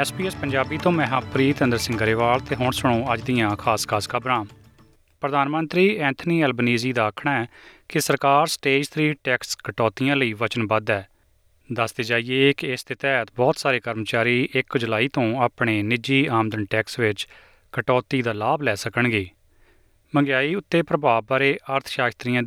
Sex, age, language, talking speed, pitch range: male, 30-49, Punjabi, 155 wpm, 110-140 Hz